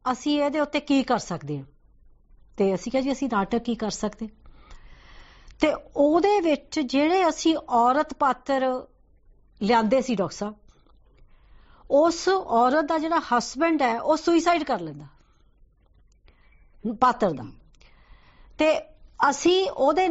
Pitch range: 230-315 Hz